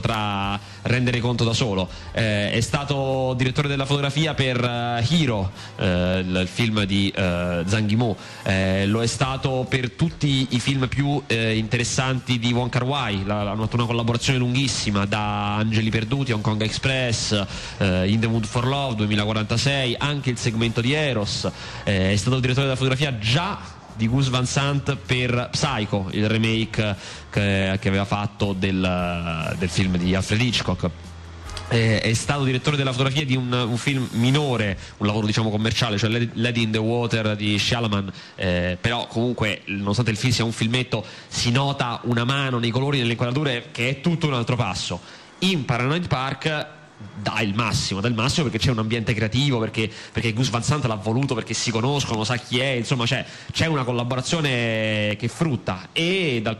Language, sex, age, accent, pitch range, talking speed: Italian, male, 20-39, native, 105-130 Hz, 170 wpm